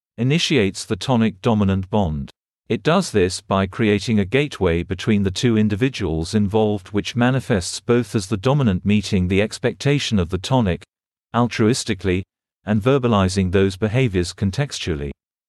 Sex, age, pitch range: male, 40-59, 95-120 Hz